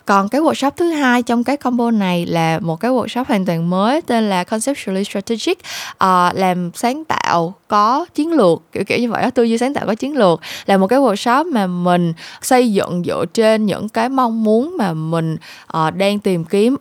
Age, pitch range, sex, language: 20-39, 175-235 Hz, female, Vietnamese